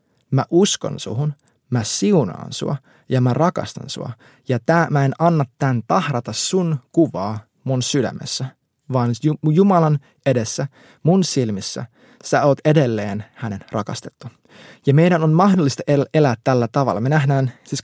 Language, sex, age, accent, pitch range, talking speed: Finnish, male, 20-39, native, 120-155 Hz, 140 wpm